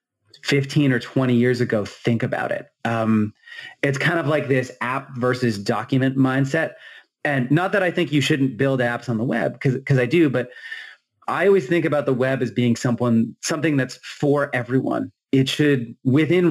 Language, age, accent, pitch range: English, 30-49, American, 120-150 Hz